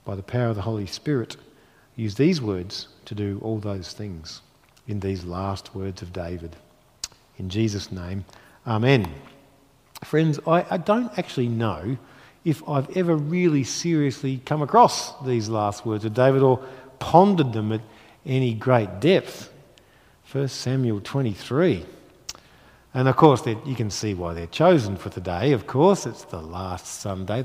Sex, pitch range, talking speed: male, 105-135 Hz, 155 wpm